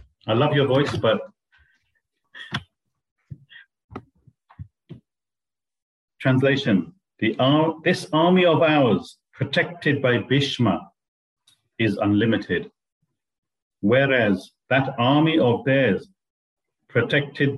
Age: 50-69